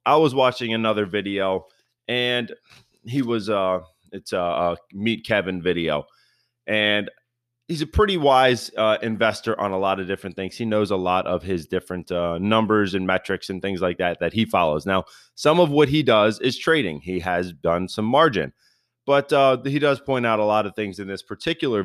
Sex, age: male, 30-49